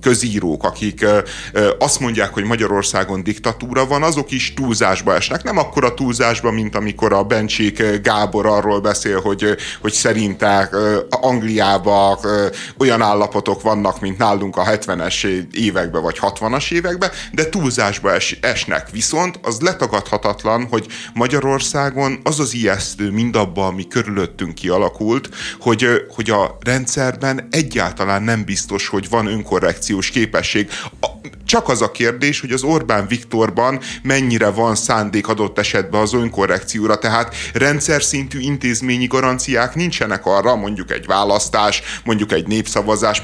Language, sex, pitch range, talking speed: Hungarian, male, 105-130 Hz, 130 wpm